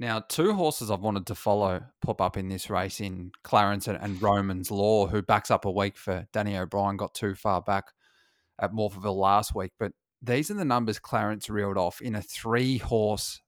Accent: Australian